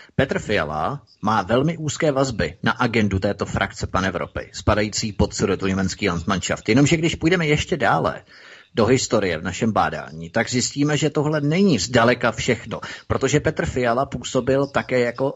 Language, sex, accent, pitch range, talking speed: Czech, male, native, 105-125 Hz, 150 wpm